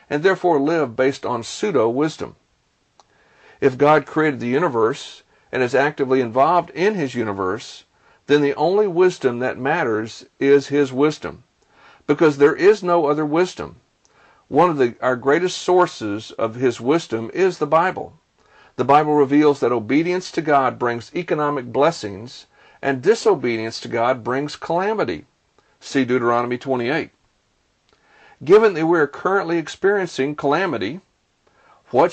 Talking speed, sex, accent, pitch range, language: 135 wpm, male, American, 130-165 Hz, English